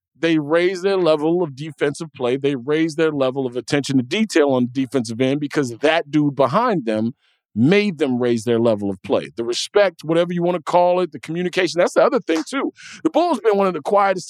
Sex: male